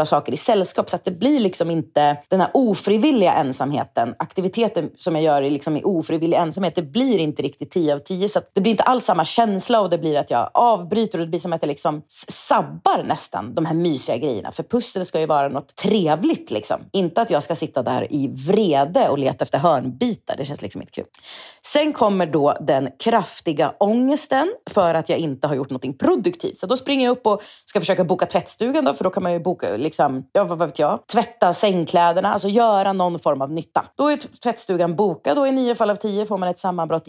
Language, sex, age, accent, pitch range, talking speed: Swedish, female, 30-49, native, 160-215 Hz, 220 wpm